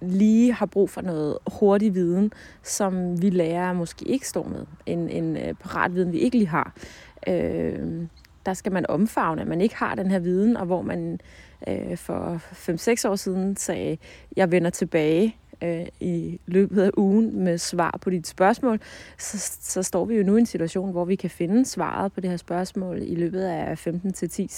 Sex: female